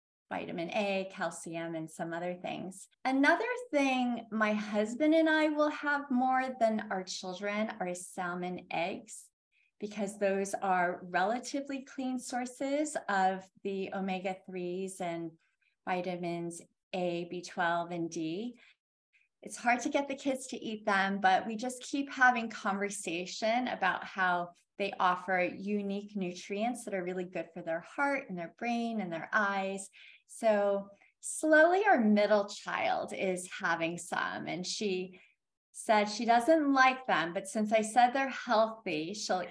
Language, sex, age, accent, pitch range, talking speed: English, female, 30-49, American, 185-240 Hz, 145 wpm